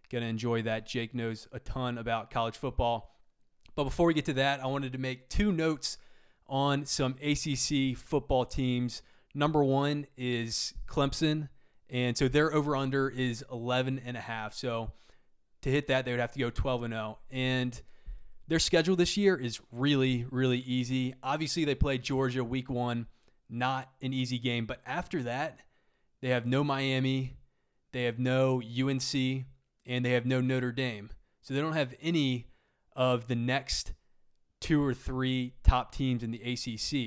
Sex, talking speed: male, 170 wpm